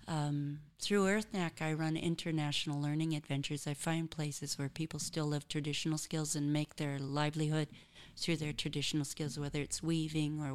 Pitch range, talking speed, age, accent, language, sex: 145-160 Hz, 165 wpm, 40-59, American, English, female